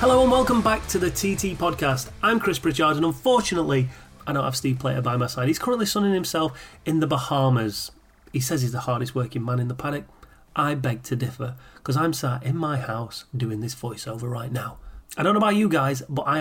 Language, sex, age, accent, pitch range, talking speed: English, male, 30-49, British, 130-170 Hz, 225 wpm